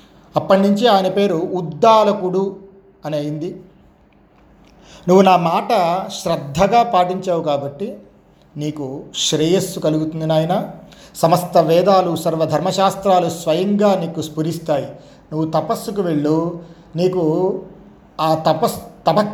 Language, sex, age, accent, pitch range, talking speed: Telugu, male, 40-59, native, 155-195 Hz, 90 wpm